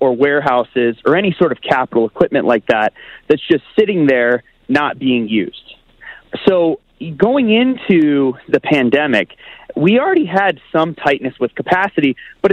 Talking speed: 145 wpm